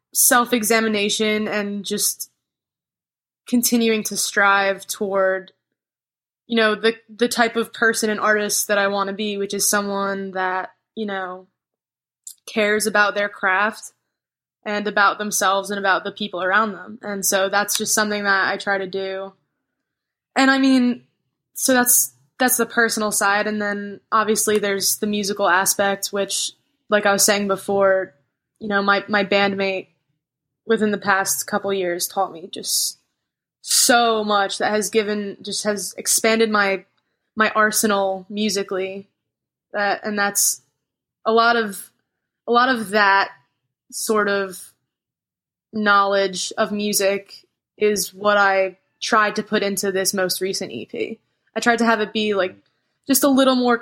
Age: 10-29